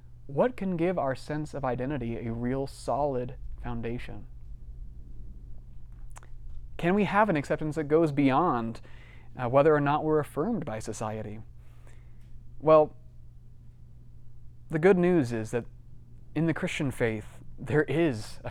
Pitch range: 120-145 Hz